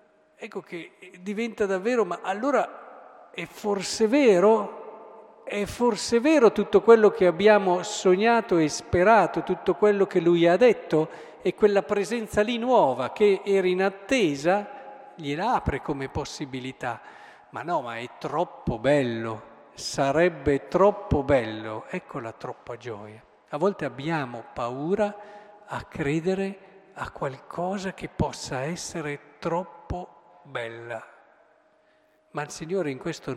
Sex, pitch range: male, 140-200 Hz